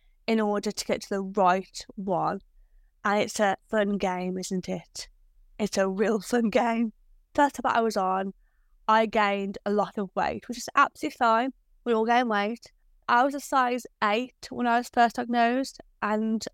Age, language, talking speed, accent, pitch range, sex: 20-39, English, 185 wpm, British, 205-260 Hz, female